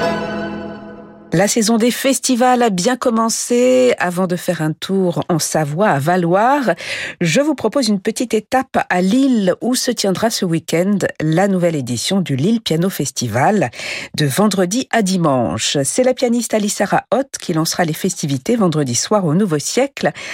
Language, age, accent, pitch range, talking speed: French, 50-69, French, 170-235 Hz, 160 wpm